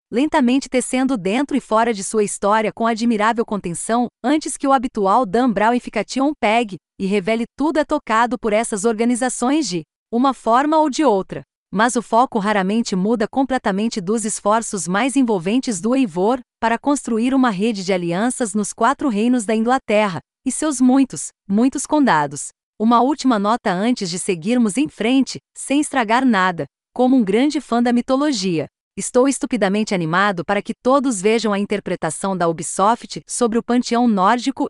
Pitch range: 205-260 Hz